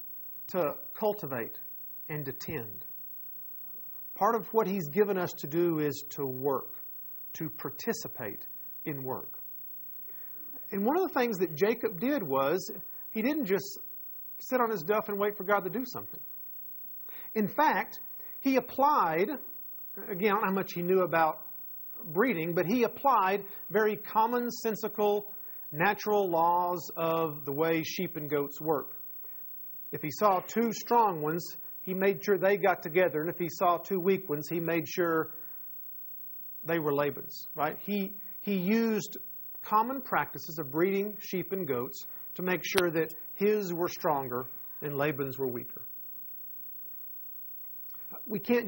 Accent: American